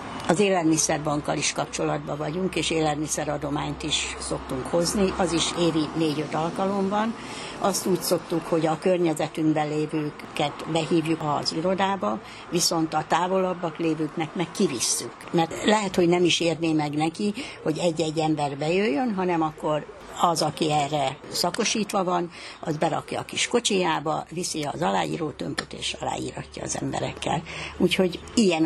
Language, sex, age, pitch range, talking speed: Hungarian, female, 60-79, 155-185 Hz, 135 wpm